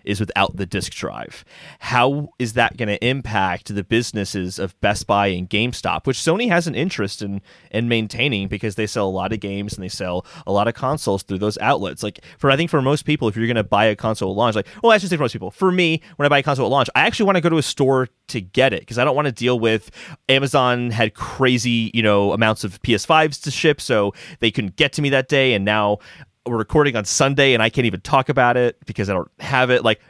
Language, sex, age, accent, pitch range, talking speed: English, male, 30-49, American, 100-140 Hz, 255 wpm